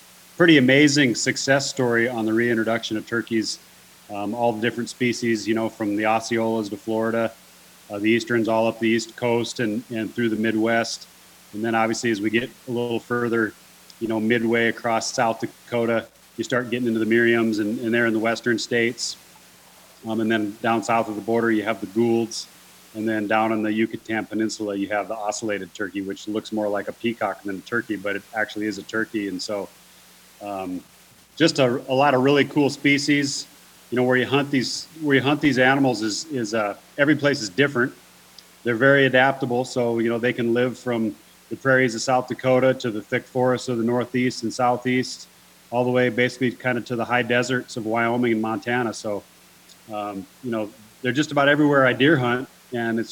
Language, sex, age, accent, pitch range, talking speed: English, male, 30-49, American, 110-125 Hz, 205 wpm